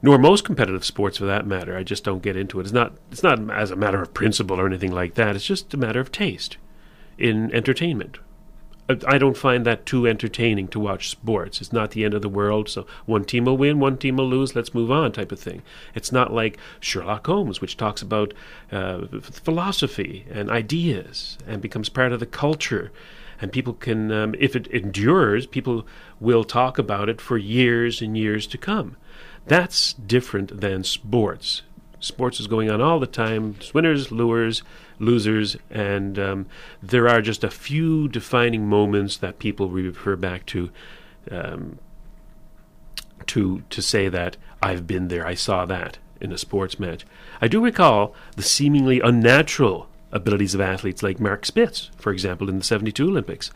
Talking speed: 185 wpm